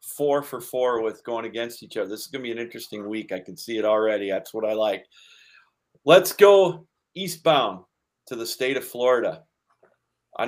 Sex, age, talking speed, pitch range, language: male, 40-59, 190 wpm, 110-130 Hz, English